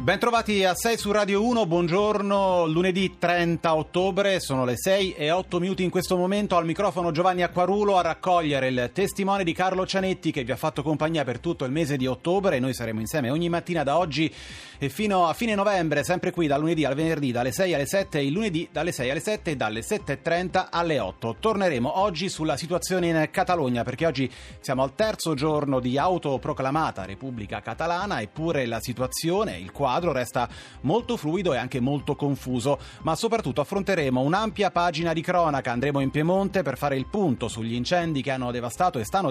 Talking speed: 195 wpm